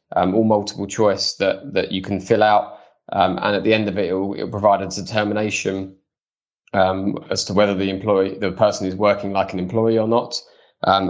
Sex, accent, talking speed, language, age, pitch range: male, British, 205 wpm, English, 20-39, 95-110 Hz